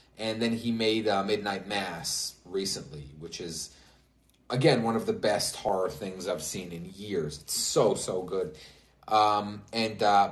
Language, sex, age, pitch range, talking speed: English, male, 30-49, 100-140 Hz, 165 wpm